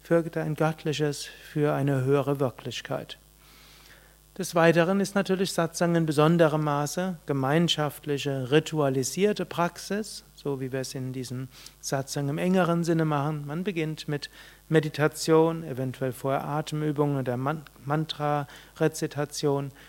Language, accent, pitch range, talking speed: German, German, 140-165 Hz, 115 wpm